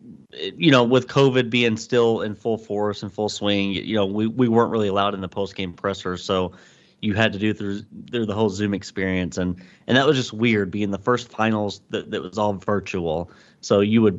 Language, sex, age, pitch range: English, male, 30-49, 100-120 Hz